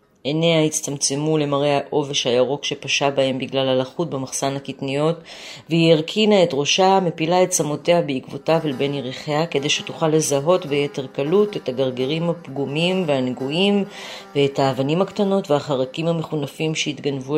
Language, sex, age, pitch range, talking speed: Hebrew, female, 30-49, 140-175 Hz, 130 wpm